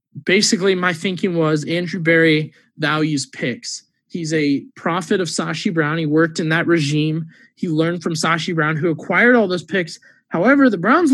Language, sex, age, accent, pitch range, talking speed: English, male, 20-39, American, 155-195 Hz, 170 wpm